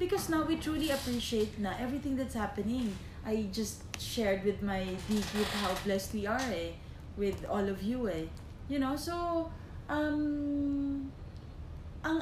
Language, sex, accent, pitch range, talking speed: English, female, Filipino, 210-290 Hz, 150 wpm